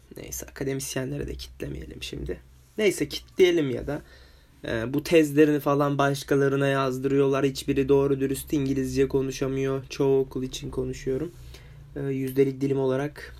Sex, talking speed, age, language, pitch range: male, 115 wpm, 20-39, Turkish, 120-145 Hz